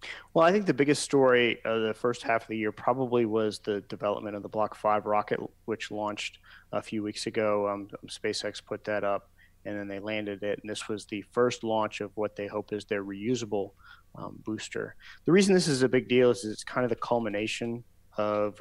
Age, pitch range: 30-49, 105-115 Hz